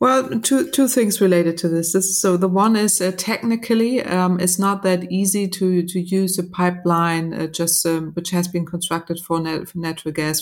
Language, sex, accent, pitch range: English, female, German, 155-180 Hz